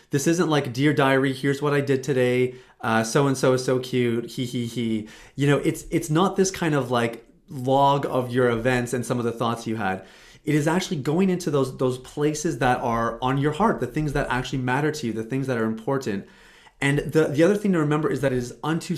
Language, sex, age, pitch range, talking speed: English, male, 30-49, 120-150 Hz, 235 wpm